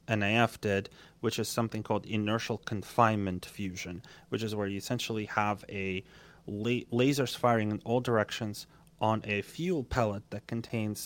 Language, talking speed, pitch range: English, 150 wpm, 105-125 Hz